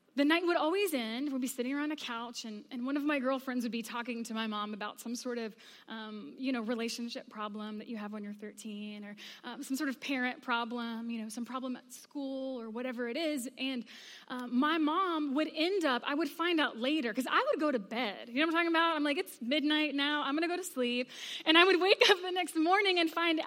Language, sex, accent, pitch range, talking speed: English, female, American, 240-305 Hz, 255 wpm